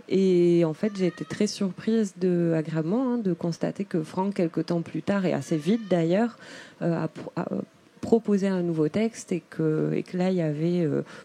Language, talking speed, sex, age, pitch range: French, 205 wpm, female, 20-39, 170-205 Hz